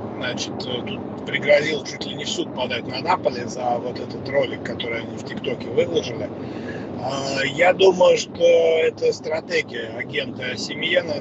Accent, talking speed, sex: native, 145 wpm, male